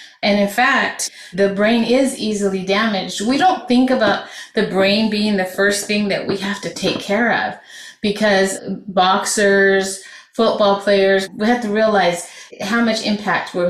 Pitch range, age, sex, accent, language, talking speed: 195-245 Hz, 30-49, female, American, English, 160 wpm